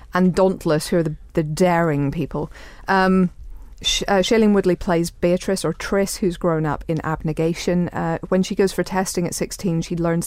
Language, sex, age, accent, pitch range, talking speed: English, female, 40-59, British, 160-190 Hz, 185 wpm